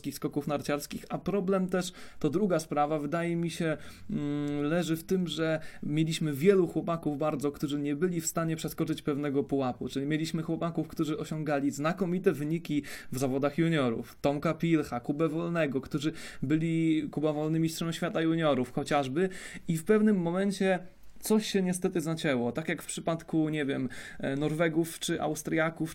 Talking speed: 155 wpm